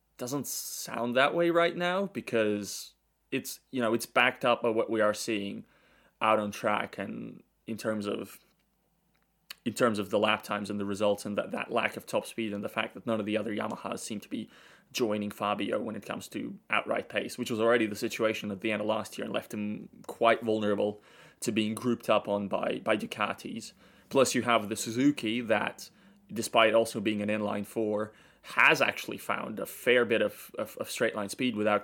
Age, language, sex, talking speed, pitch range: 20-39, English, male, 205 wpm, 105-120 Hz